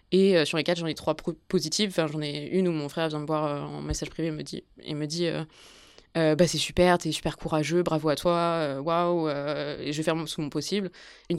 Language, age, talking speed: French, 20-39, 250 wpm